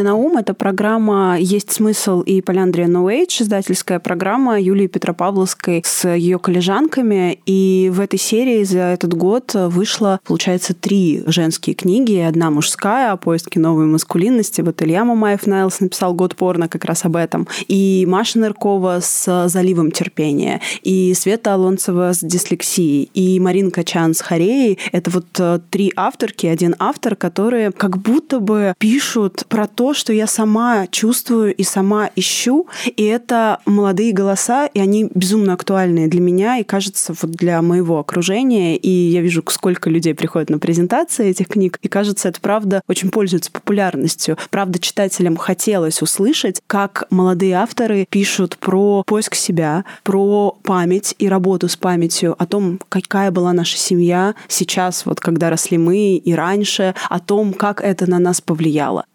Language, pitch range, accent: Russian, 180-205 Hz, native